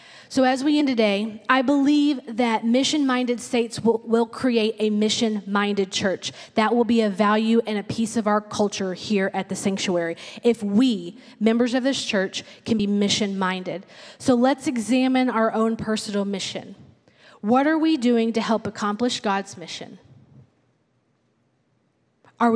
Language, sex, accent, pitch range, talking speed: English, female, American, 205-250 Hz, 150 wpm